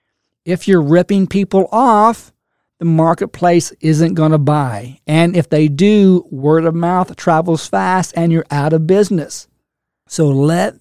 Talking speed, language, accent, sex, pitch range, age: 150 wpm, English, American, male, 150-190 Hz, 50-69